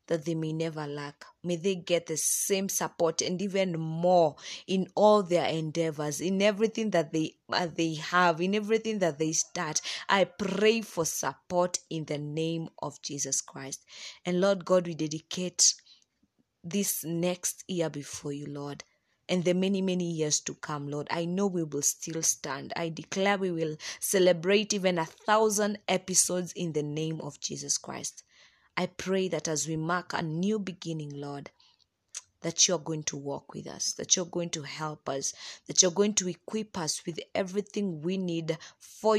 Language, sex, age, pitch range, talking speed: English, female, 20-39, 155-190 Hz, 175 wpm